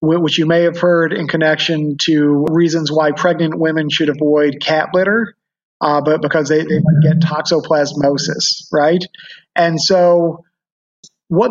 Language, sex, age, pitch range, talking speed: English, male, 40-59, 160-190 Hz, 145 wpm